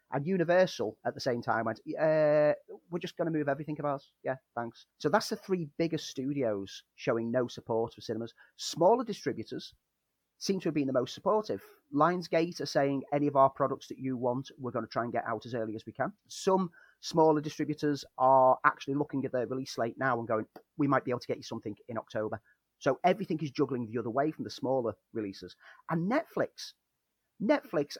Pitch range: 130-170 Hz